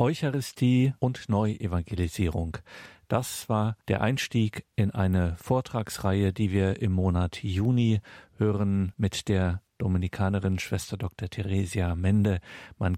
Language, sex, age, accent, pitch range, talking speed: German, male, 50-69, German, 95-110 Hz, 110 wpm